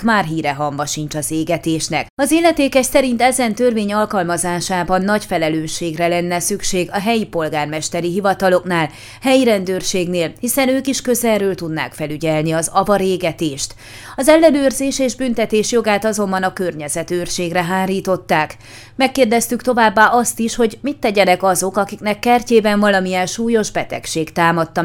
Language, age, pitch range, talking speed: Hungarian, 30-49, 165-230 Hz, 130 wpm